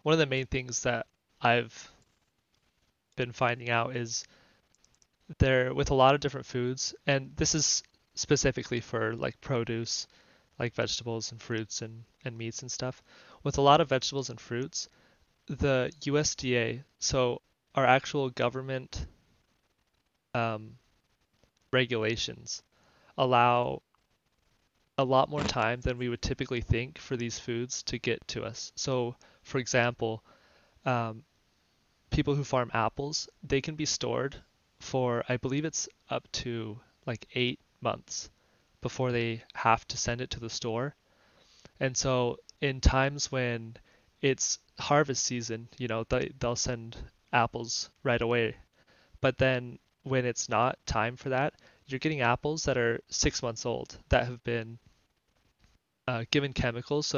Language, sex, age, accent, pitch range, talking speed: English, male, 20-39, American, 115-135 Hz, 140 wpm